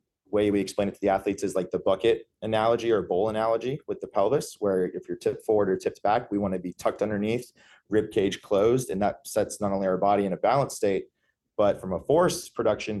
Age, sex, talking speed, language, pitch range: 30-49, male, 235 wpm, English, 95-110 Hz